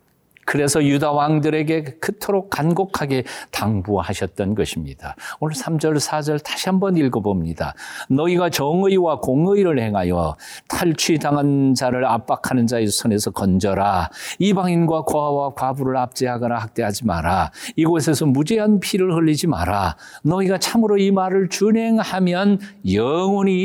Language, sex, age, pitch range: Korean, male, 50-69, 100-160 Hz